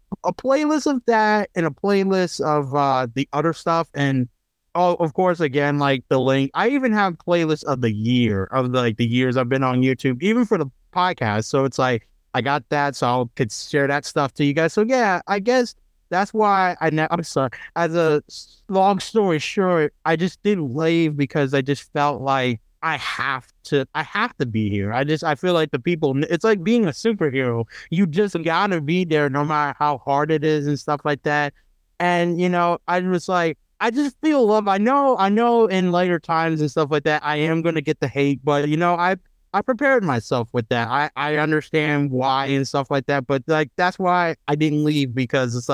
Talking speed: 220 wpm